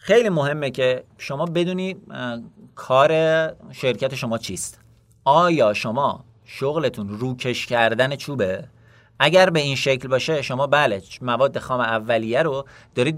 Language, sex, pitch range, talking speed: Persian, male, 120-165 Hz, 125 wpm